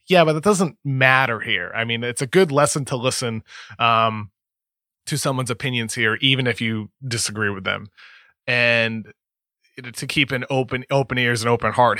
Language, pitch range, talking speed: English, 115-140 Hz, 175 wpm